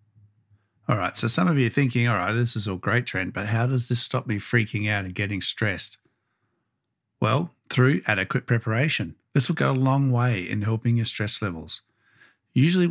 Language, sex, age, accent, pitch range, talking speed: English, male, 60-79, Australian, 105-125 Hz, 195 wpm